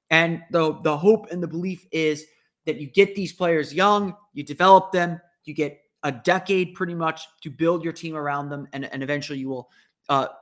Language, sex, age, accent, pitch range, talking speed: English, male, 30-49, American, 145-175 Hz, 200 wpm